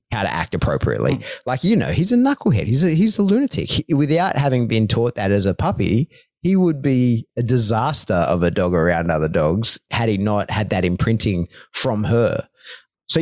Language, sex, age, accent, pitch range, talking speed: English, male, 30-49, Australian, 95-125 Hz, 195 wpm